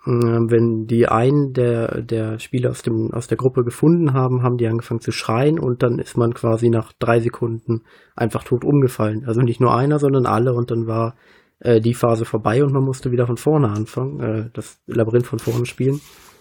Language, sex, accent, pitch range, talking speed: German, male, German, 115-135 Hz, 200 wpm